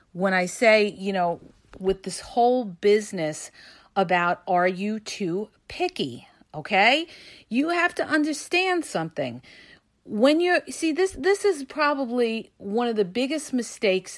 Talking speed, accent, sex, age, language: 135 wpm, American, female, 40-59, English